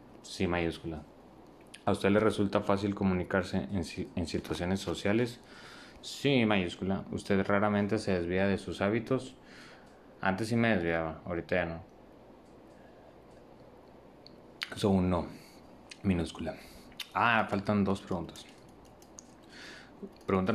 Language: Spanish